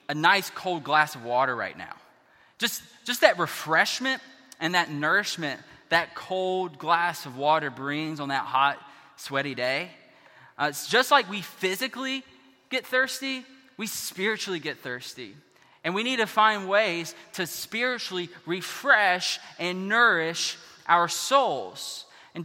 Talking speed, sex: 140 wpm, male